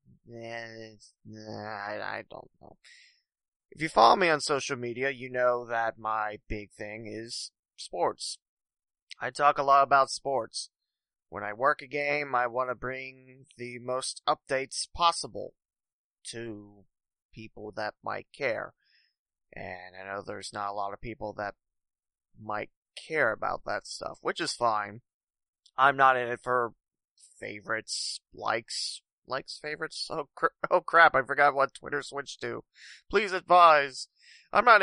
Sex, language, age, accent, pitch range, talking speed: male, English, 20-39, American, 110-135 Hz, 150 wpm